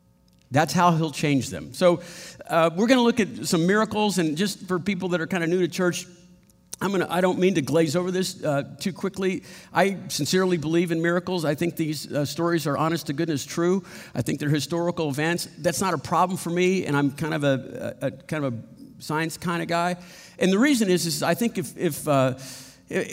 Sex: male